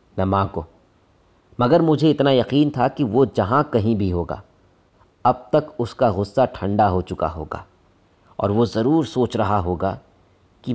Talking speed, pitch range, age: 150 wpm, 95-130 Hz, 40-59